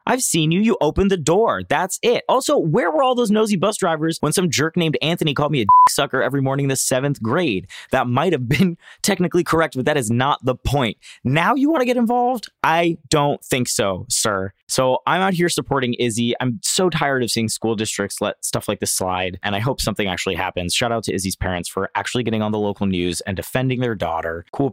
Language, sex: English, male